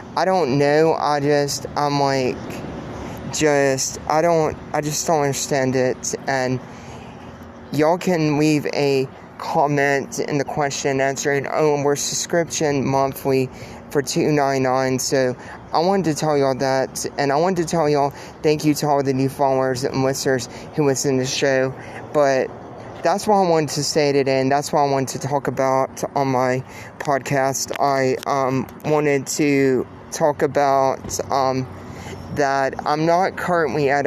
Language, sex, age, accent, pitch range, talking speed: English, male, 20-39, American, 130-145 Hz, 160 wpm